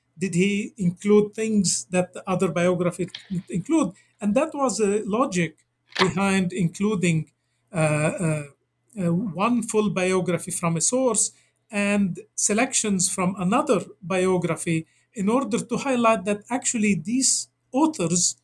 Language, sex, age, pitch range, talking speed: English, male, 50-69, 170-215 Hz, 125 wpm